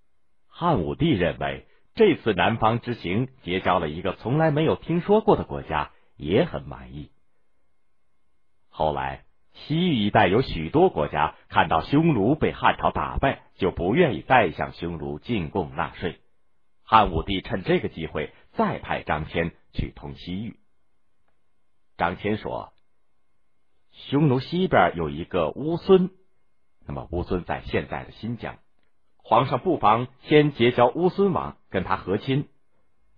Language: Chinese